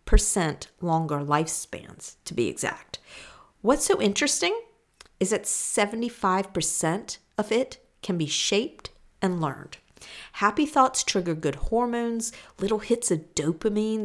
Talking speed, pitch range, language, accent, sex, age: 120 wpm, 155-225 Hz, English, American, female, 40-59